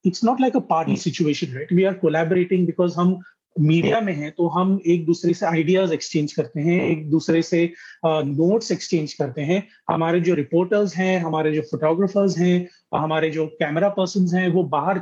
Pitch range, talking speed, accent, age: 160-195 Hz, 185 wpm, native, 30-49